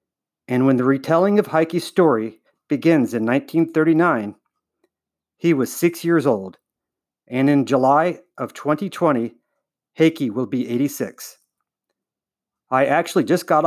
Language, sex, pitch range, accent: English, male, 125-160 Hz, American